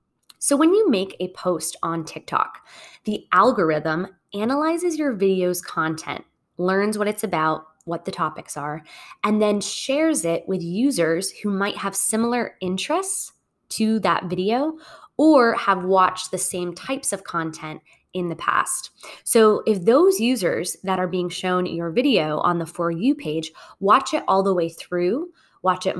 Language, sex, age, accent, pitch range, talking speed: English, female, 20-39, American, 175-230 Hz, 160 wpm